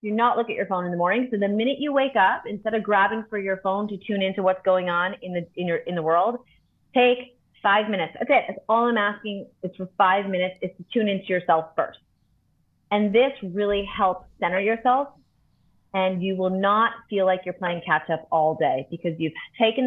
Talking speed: 225 wpm